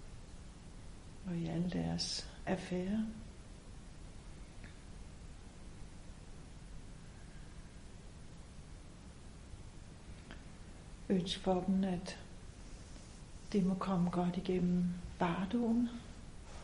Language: Danish